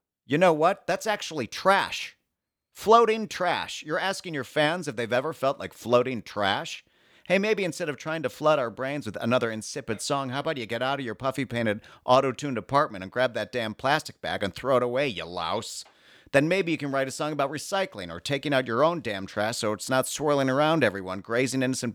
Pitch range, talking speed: 105-145 Hz, 215 wpm